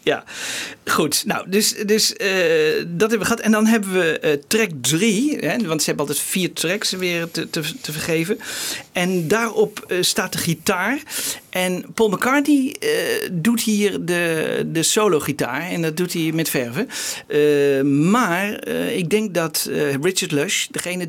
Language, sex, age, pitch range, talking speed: Dutch, male, 50-69, 150-210 Hz, 175 wpm